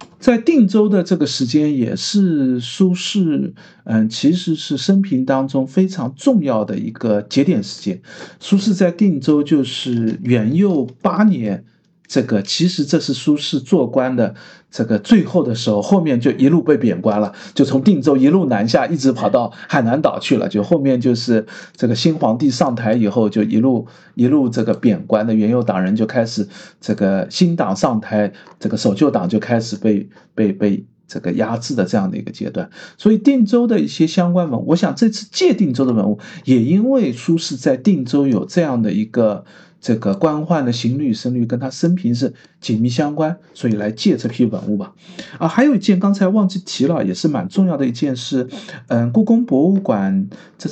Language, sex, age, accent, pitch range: Chinese, male, 50-69, native, 120-195 Hz